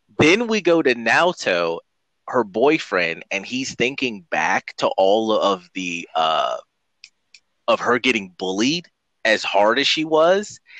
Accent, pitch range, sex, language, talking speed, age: American, 110-180 Hz, male, English, 140 wpm, 30-49